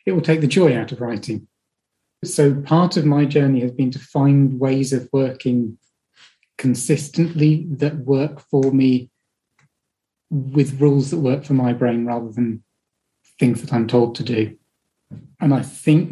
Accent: British